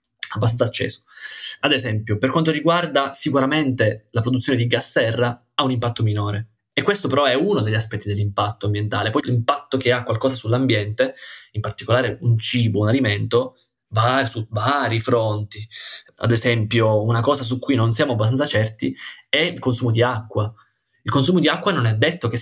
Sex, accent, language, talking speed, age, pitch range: male, native, Italian, 175 wpm, 20-39, 110-130 Hz